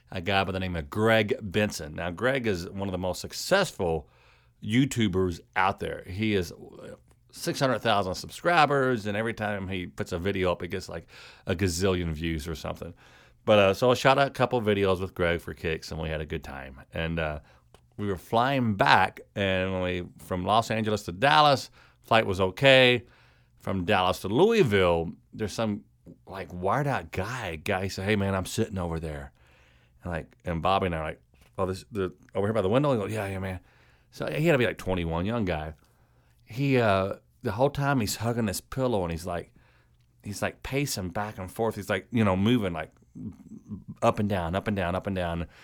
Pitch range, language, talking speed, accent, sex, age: 85-115 Hz, English, 200 wpm, American, male, 40-59